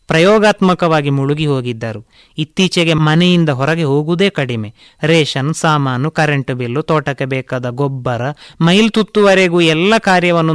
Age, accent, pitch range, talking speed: 30-49, native, 150-195 Hz, 110 wpm